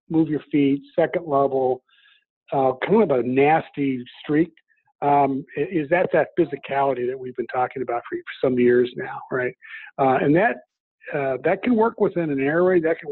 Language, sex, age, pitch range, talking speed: English, male, 50-69, 130-180 Hz, 175 wpm